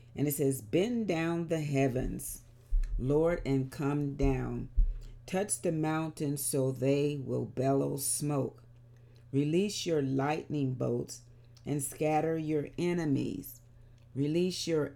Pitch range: 120-150 Hz